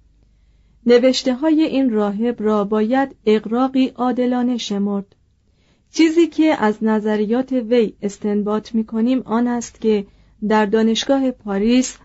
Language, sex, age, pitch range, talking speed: Persian, female, 40-59, 205-245 Hz, 110 wpm